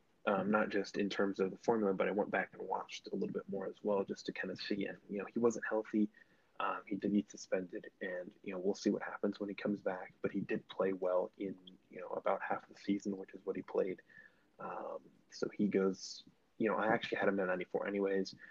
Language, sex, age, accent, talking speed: English, male, 20-39, American, 250 wpm